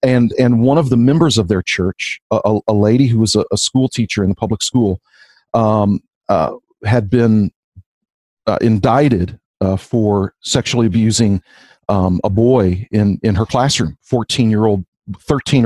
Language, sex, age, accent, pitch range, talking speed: English, male, 40-59, American, 105-135 Hz, 165 wpm